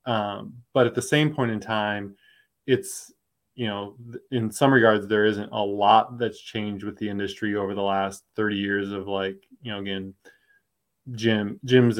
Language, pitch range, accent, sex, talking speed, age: English, 100-120 Hz, American, male, 170 wpm, 20-39